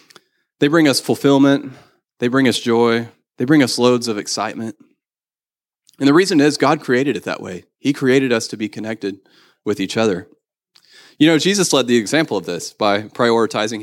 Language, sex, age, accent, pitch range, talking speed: English, male, 30-49, American, 105-140 Hz, 180 wpm